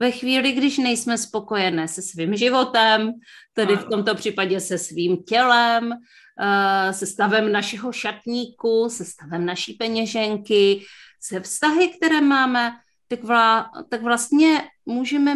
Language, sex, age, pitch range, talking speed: Czech, female, 30-49, 200-255 Hz, 120 wpm